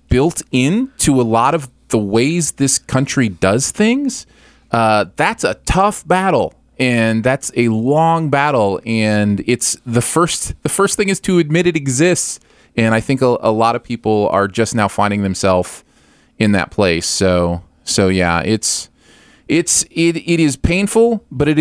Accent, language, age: American, English, 30-49